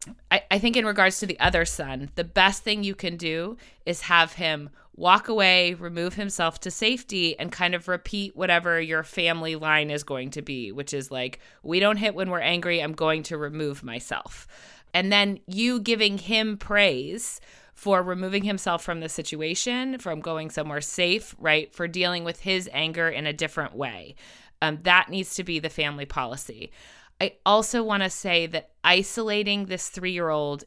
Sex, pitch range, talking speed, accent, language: female, 160-200 Hz, 180 wpm, American, English